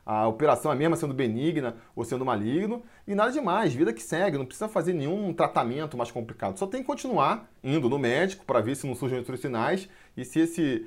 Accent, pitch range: Brazilian, 125-190 Hz